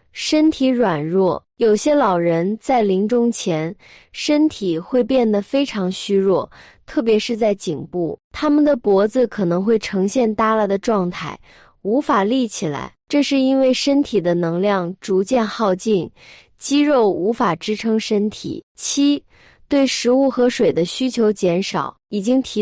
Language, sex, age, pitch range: Chinese, female, 20-39, 190-260 Hz